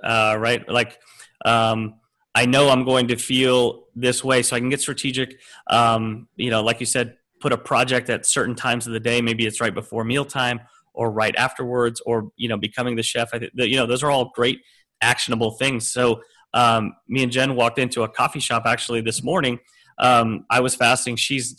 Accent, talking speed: American, 205 wpm